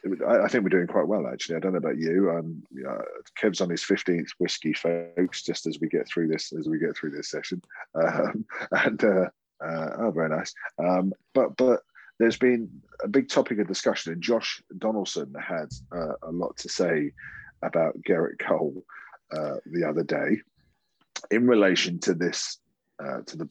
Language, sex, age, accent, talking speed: English, male, 30-49, British, 185 wpm